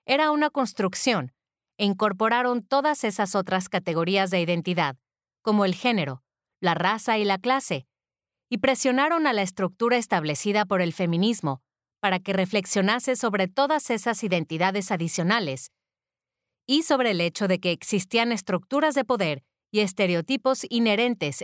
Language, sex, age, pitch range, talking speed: English, female, 30-49, 180-245 Hz, 135 wpm